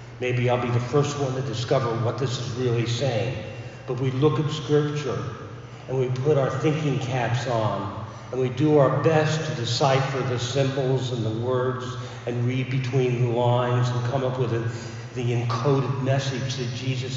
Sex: male